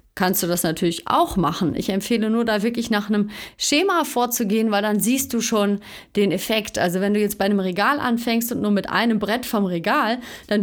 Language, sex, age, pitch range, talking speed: German, female, 30-49, 185-230 Hz, 215 wpm